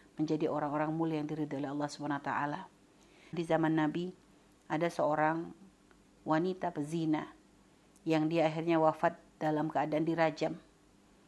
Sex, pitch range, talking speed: female, 160-180 Hz, 115 wpm